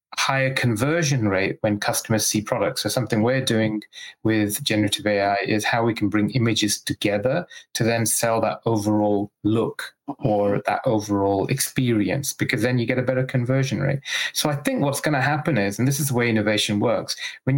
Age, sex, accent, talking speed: 30-49, male, British, 190 wpm